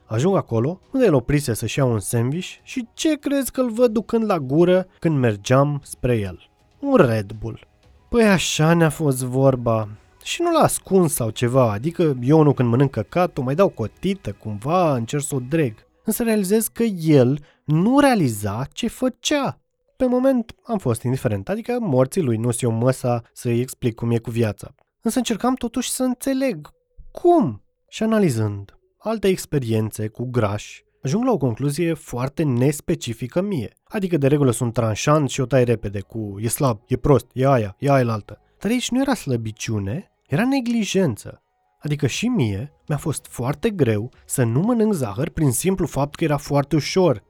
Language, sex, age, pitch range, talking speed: Romanian, male, 20-39, 120-195 Hz, 175 wpm